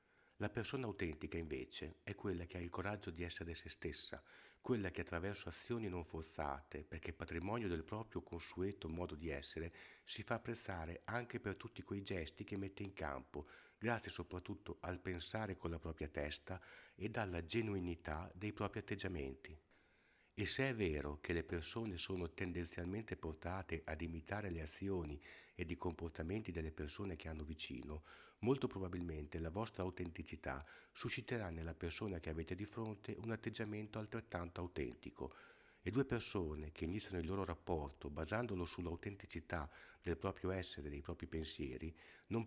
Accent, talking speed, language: native, 155 wpm, Italian